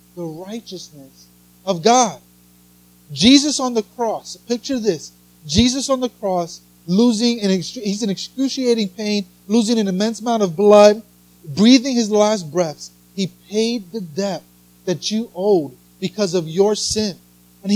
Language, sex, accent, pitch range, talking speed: English, male, American, 175-240 Hz, 140 wpm